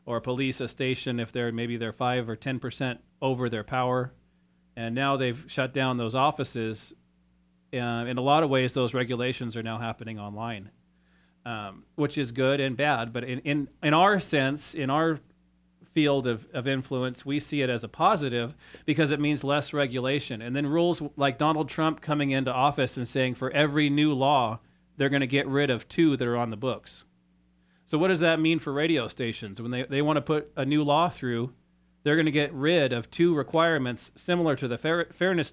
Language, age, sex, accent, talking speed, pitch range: English, 30-49, male, American, 200 wpm, 120-145 Hz